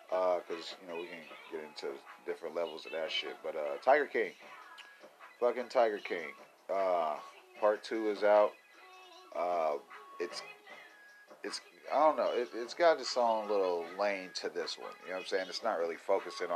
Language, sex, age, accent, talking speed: English, male, 30-49, American, 180 wpm